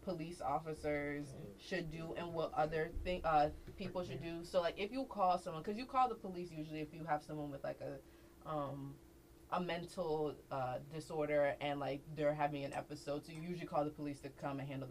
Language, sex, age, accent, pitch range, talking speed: English, female, 20-39, American, 140-160 Hz, 210 wpm